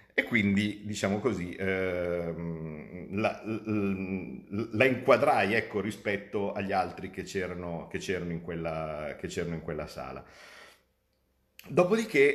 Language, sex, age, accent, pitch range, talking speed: Italian, male, 50-69, native, 85-110 Hz, 120 wpm